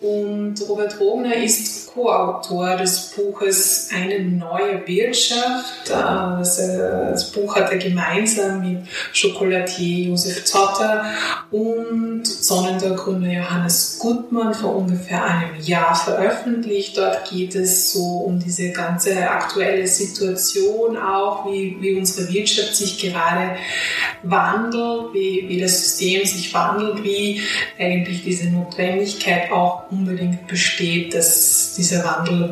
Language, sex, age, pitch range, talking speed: German, female, 20-39, 180-205 Hz, 115 wpm